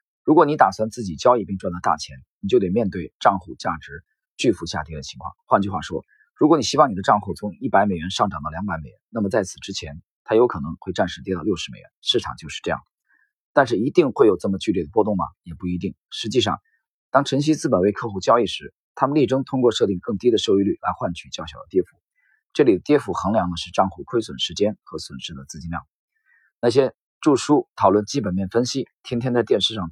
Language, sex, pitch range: Chinese, male, 90-140 Hz